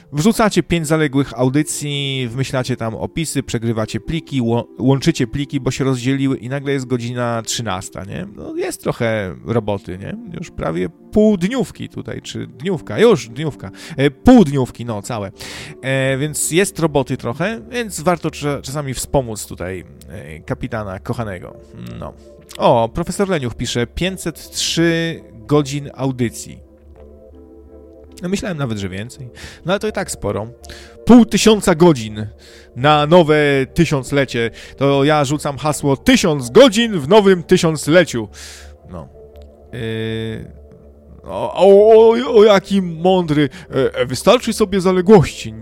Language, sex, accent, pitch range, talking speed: Polish, male, native, 110-175 Hz, 130 wpm